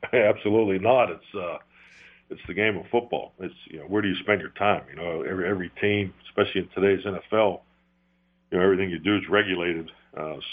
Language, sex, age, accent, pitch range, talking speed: English, male, 50-69, American, 80-100 Hz, 200 wpm